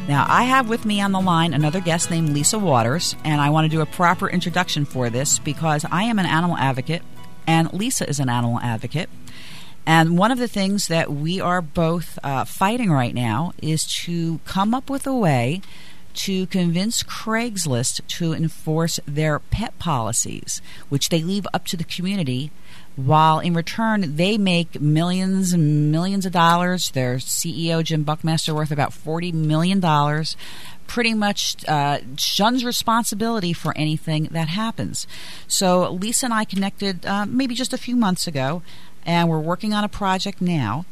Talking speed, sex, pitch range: 170 wpm, female, 150-190 Hz